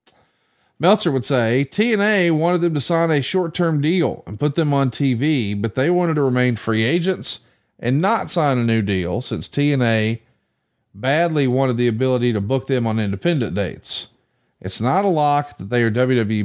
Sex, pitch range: male, 115-150 Hz